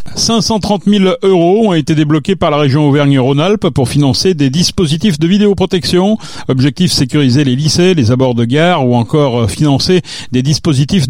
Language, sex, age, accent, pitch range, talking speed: French, male, 40-59, French, 130-160 Hz, 155 wpm